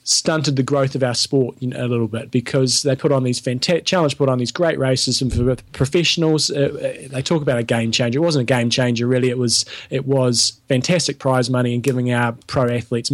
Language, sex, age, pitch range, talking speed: English, male, 20-39, 125-145 Hz, 225 wpm